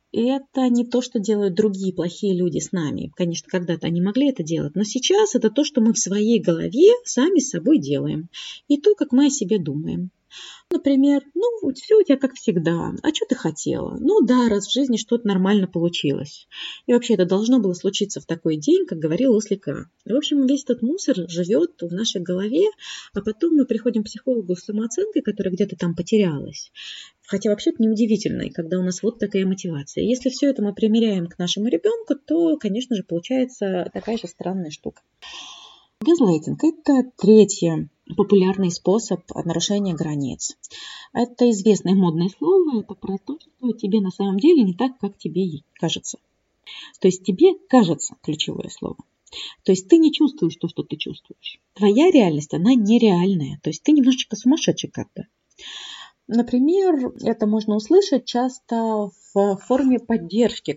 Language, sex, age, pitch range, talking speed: Russian, female, 20-39, 185-270 Hz, 170 wpm